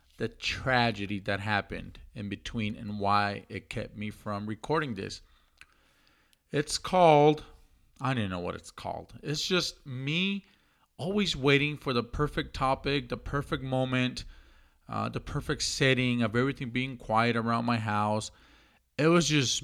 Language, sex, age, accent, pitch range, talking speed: English, male, 40-59, American, 105-150 Hz, 145 wpm